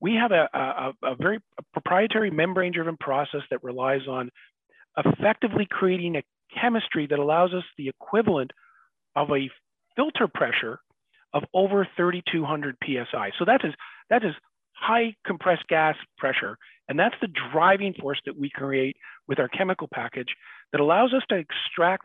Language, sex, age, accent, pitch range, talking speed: English, male, 40-59, American, 140-190 Hz, 145 wpm